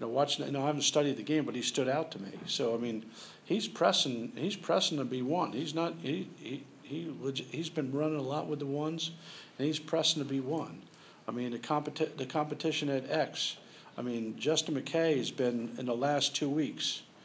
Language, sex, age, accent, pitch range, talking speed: English, male, 50-69, American, 120-150 Hz, 195 wpm